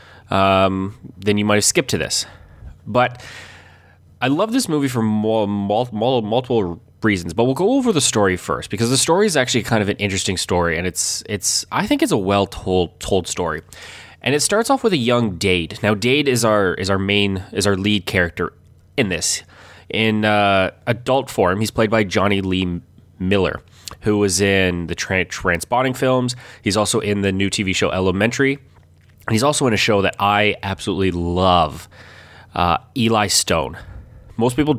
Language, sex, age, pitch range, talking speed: English, male, 20-39, 90-115 Hz, 185 wpm